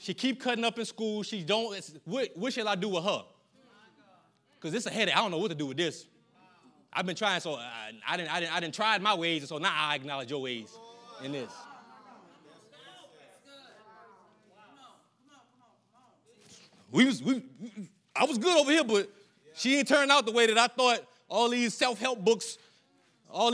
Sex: male